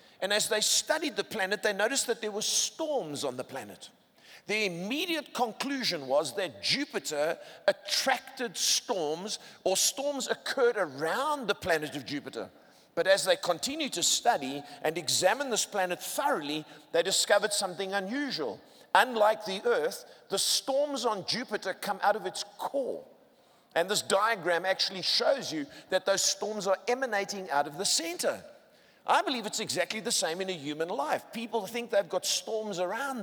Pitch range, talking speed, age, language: 175-240 Hz, 160 wpm, 50-69, English